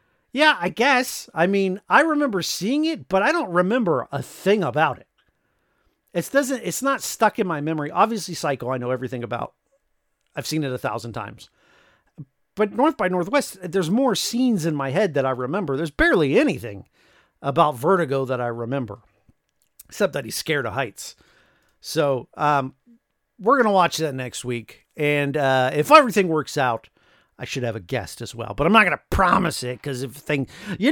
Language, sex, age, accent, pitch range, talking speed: English, male, 50-69, American, 135-190 Hz, 185 wpm